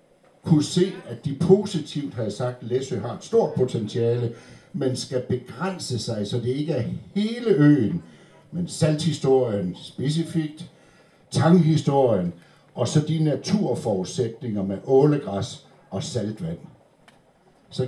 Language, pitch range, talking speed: Danish, 110-155 Hz, 125 wpm